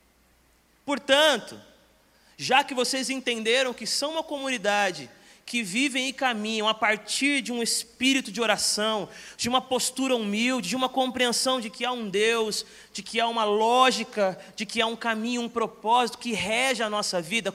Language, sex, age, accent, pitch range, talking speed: Portuguese, male, 30-49, Brazilian, 210-255 Hz, 170 wpm